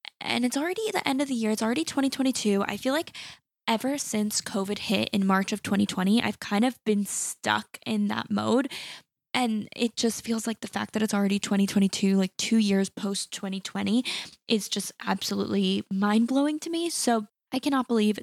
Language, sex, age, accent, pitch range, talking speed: English, female, 10-29, American, 200-245 Hz, 190 wpm